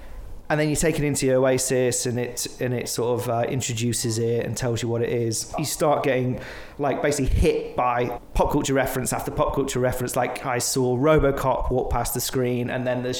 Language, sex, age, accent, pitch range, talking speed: English, male, 30-49, British, 125-150 Hz, 215 wpm